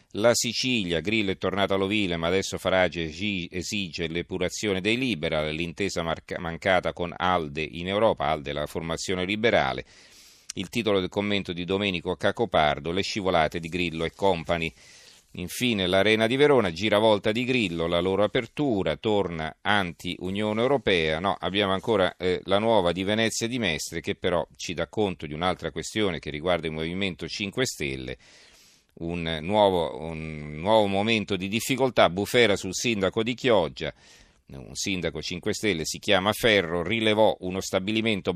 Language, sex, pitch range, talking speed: Italian, male, 85-105 Hz, 150 wpm